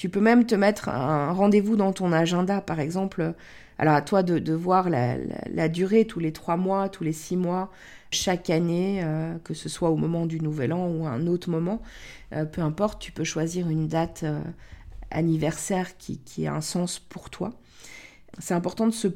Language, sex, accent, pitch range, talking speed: French, female, French, 165-195 Hz, 210 wpm